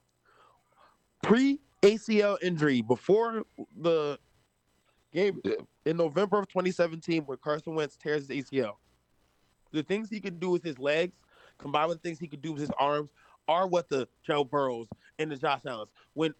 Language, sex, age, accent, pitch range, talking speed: English, male, 20-39, American, 145-170 Hz, 155 wpm